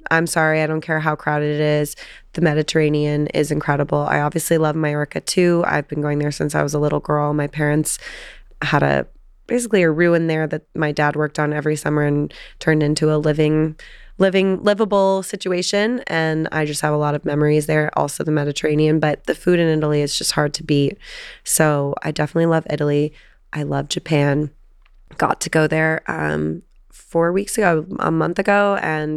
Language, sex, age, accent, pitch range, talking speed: English, female, 20-39, American, 150-160 Hz, 190 wpm